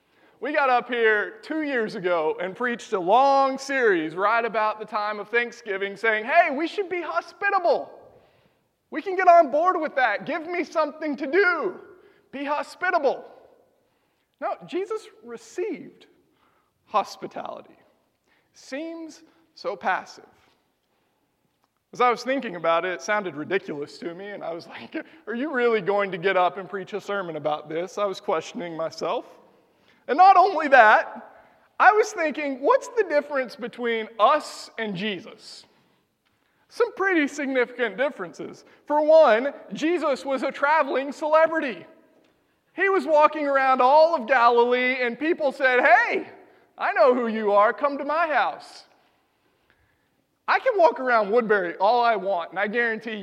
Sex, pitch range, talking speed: male, 215-330 Hz, 150 wpm